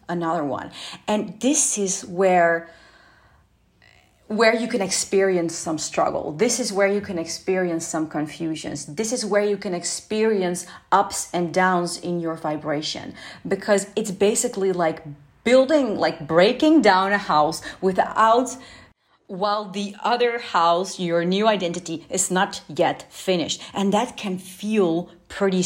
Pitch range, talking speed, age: 165-205 Hz, 140 wpm, 40-59